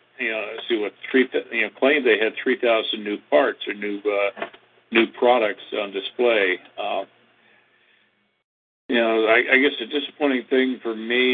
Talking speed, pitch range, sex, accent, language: 175 wpm, 100-120 Hz, male, American, English